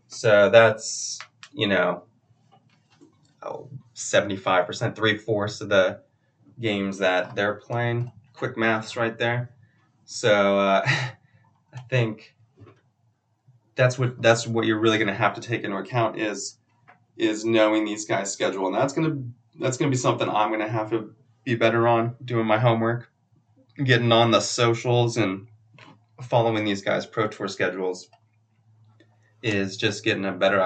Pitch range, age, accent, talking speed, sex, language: 105-120 Hz, 20-39, American, 155 wpm, male, English